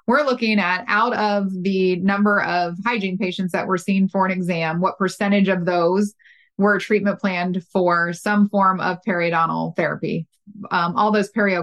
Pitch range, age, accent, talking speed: 175-210 Hz, 20-39, American, 170 wpm